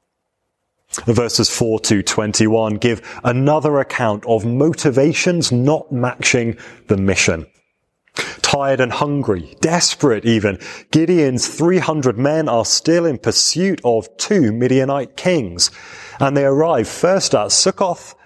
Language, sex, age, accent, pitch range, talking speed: English, male, 30-49, British, 110-145 Hz, 115 wpm